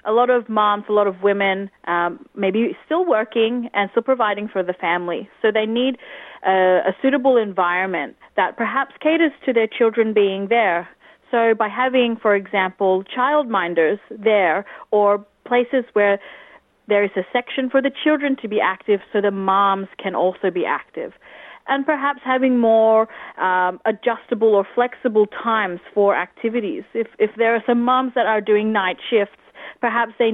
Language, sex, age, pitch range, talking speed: Filipino, female, 30-49, 200-255 Hz, 170 wpm